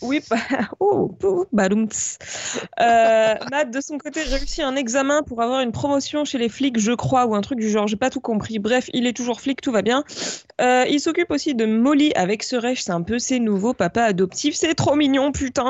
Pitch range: 225-295 Hz